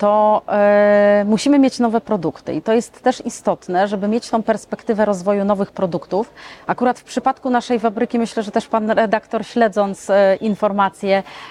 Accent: native